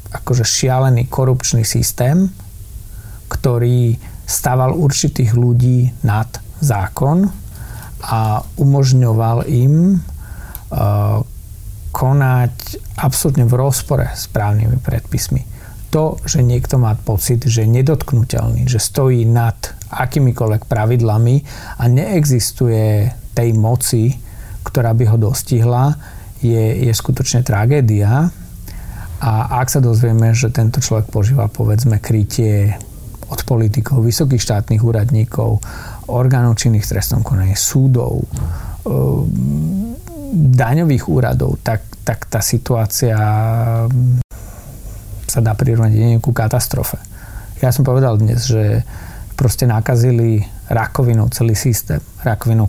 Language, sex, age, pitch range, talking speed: Slovak, male, 40-59, 105-125 Hz, 100 wpm